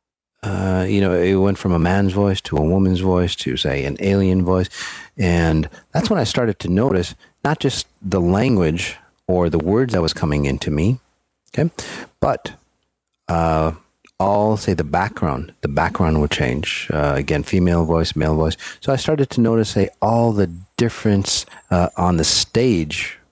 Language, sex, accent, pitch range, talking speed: English, male, American, 80-100 Hz, 170 wpm